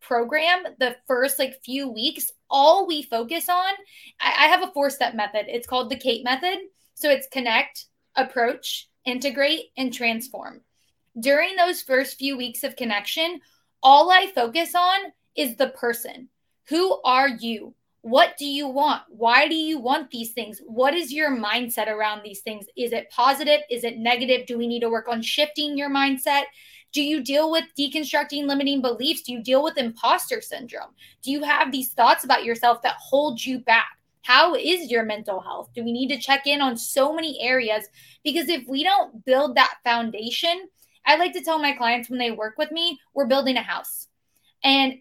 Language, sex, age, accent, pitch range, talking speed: English, female, 20-39, American, 235-295 Hz, 185 wpm